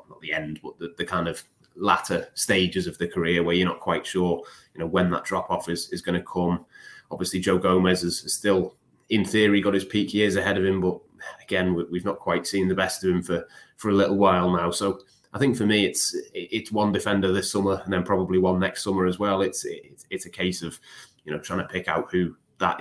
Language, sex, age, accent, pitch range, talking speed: English, male, 20-39, British, 90-95 Hz, 235 wpm